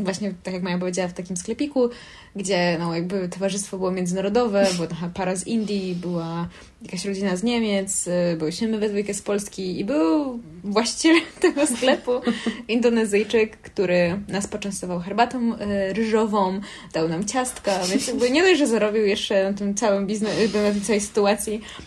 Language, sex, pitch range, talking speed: Polish, female, 195-235 Hz, 155 wpm